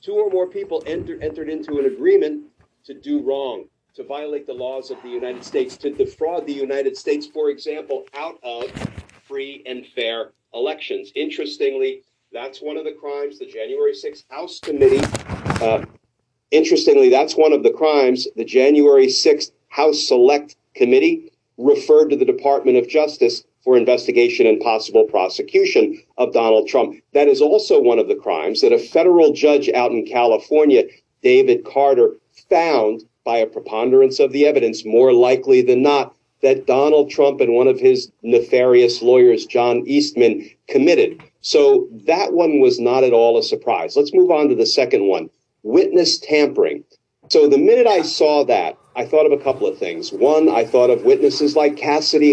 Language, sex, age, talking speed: English, male, 40-59, 170 wpm